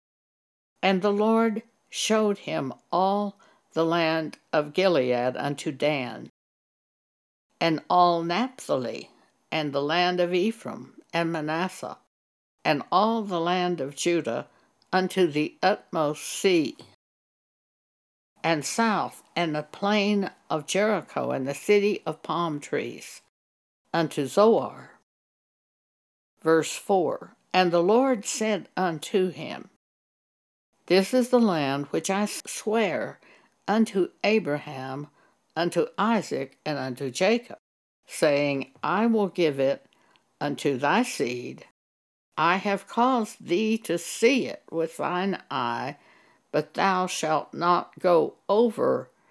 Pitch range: 155-205 Hz